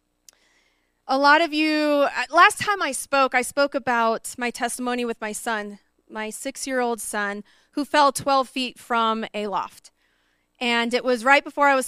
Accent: American